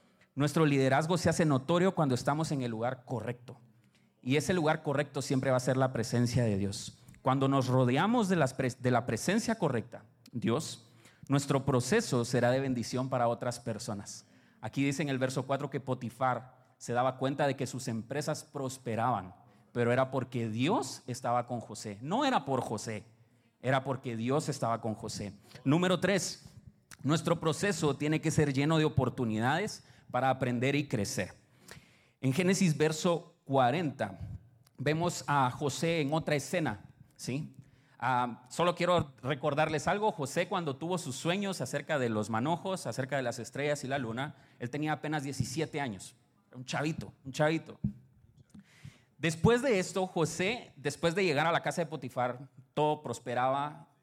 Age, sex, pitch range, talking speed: 30-49, male, 120-155 Hz, 160 wpm